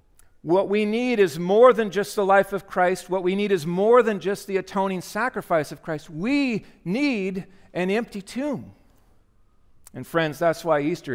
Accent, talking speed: American, 180 wpm